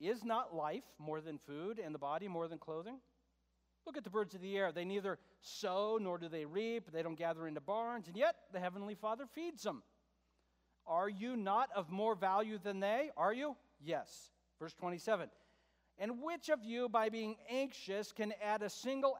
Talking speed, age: 195 wpm, 40-59